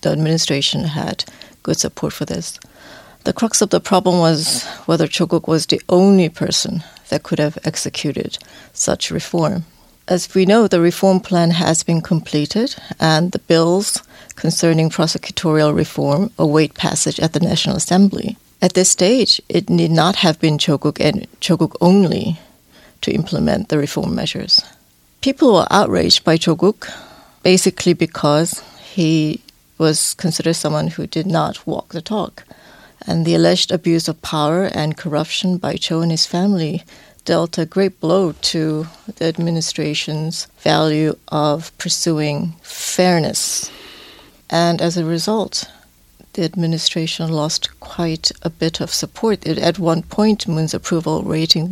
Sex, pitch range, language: female, 155-185 Hz, Korean